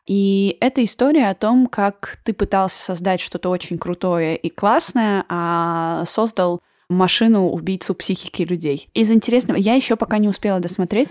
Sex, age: female, 20-39